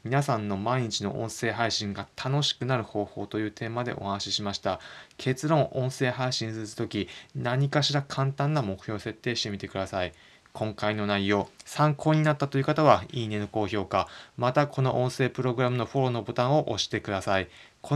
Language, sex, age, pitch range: Japanese, male, 20-39, 105-135 Hz